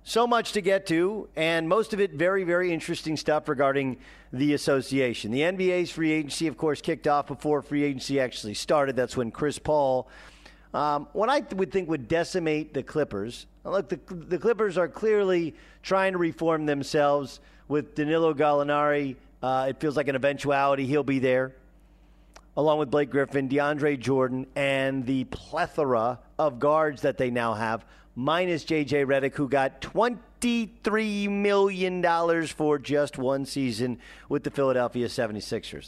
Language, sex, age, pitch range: English, male, 50-69, 125-165 Hz